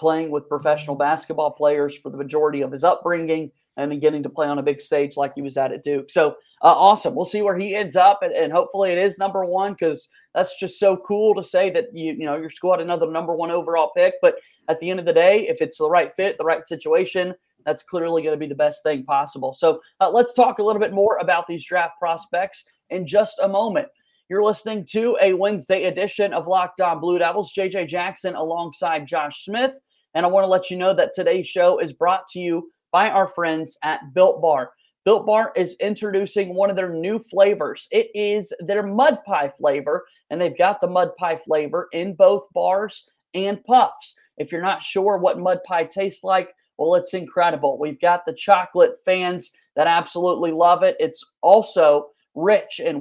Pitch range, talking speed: 165-210 Hz, 215 wpm